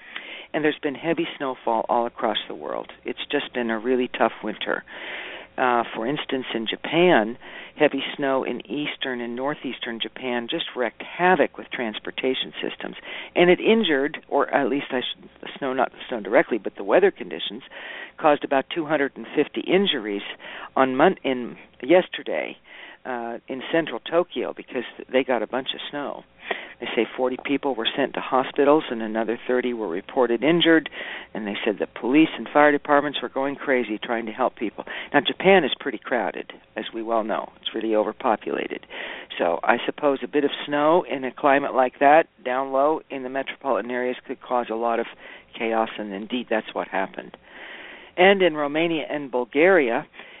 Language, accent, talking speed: English, American, 175 wpm